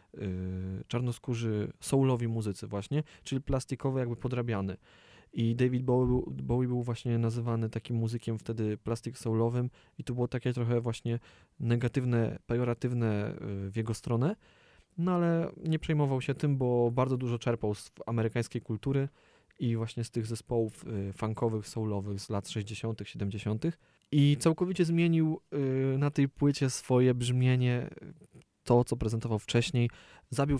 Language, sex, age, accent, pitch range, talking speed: Polish, male, 20-39, native, 110-125 Hz, 135 wpm